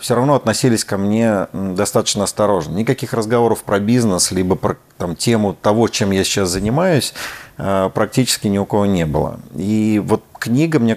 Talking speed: 165 wpm